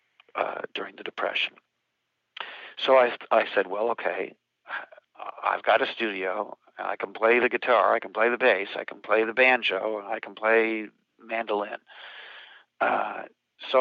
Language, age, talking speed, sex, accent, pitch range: English, 60-79, 150 wpm, male, American, 110-130 Hz